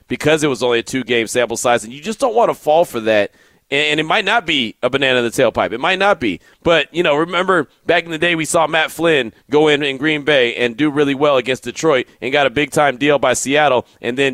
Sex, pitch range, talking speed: male, 125-160 Hz, 265 wpm